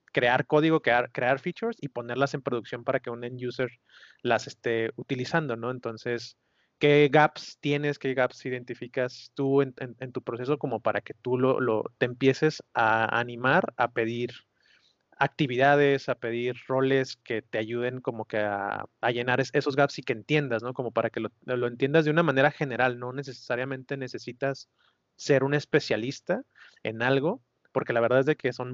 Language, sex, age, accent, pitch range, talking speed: Spanish, male, 30-49, Mexican, 125-145 Hz, 175 wpm